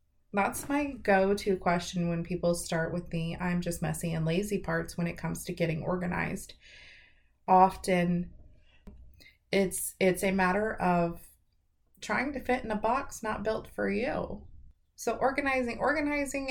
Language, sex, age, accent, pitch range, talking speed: English, female, 30-49, American, 175-220 Hz, 145 wpm